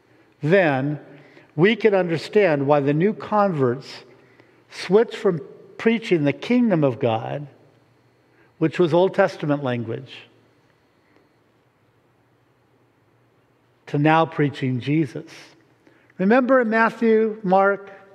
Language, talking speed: English, 95 wpm